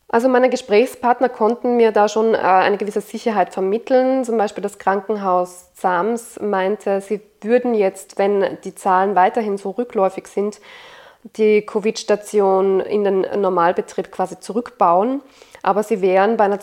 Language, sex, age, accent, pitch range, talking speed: German, female, 20-39, German, 190-220 Hz, 140 wpm